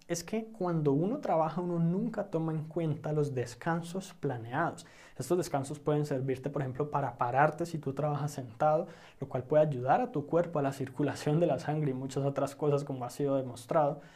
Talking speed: 195 wpm